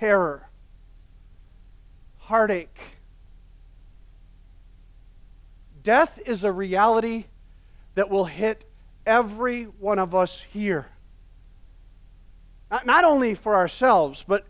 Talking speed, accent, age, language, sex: 85 wpm, American, 40-59, English, male